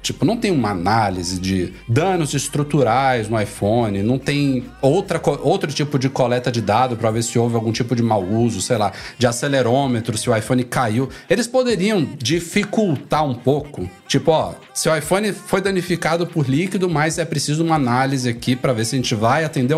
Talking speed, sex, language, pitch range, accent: 190 wpm, male, Portuguese, 120-160 Hz, Brazilian